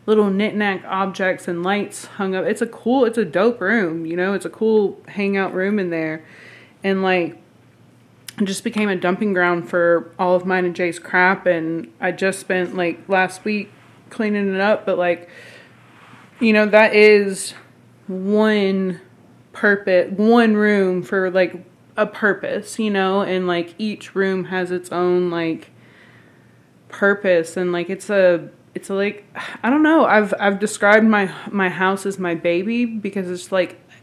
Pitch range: 180-205 Hz